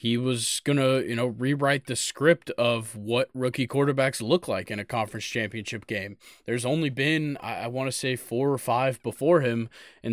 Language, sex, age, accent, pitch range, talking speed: English, male, 20-39, American, 115-135 Hz, 195 wpm